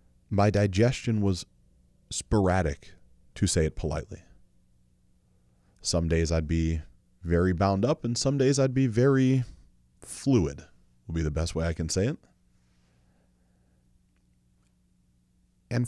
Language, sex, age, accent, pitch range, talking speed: English, male, 30-49, American, 80-105 Hz, 120 wpm